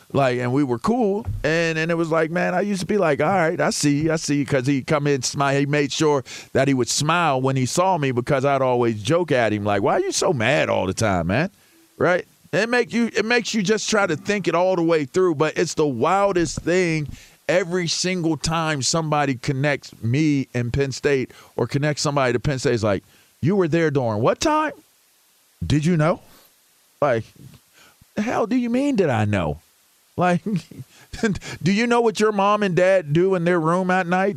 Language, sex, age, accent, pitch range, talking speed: English, male, 40-59, American, 140-185 Hz, 220 wpm